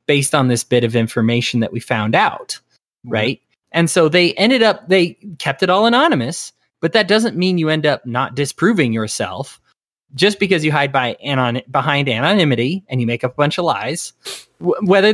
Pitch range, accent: 125-185 Hz, American